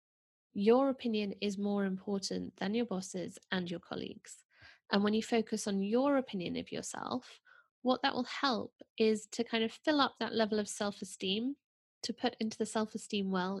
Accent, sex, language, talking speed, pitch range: British, female, English, 175 wpm, 200-255 Hz